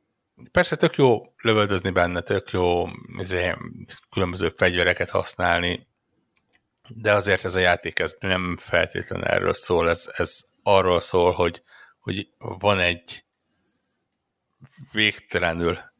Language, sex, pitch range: Hungarian, male, 90-110 Hz